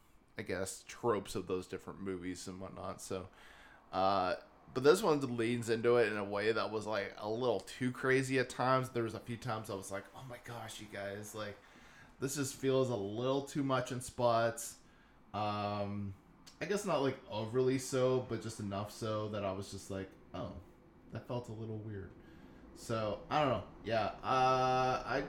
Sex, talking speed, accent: male, 190 wpm, American